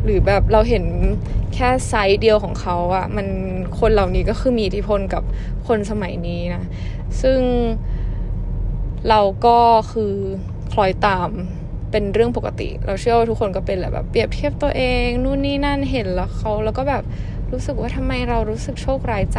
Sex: female